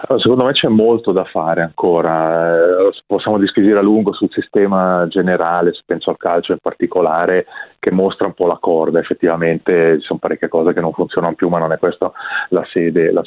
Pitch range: 85-105 Hz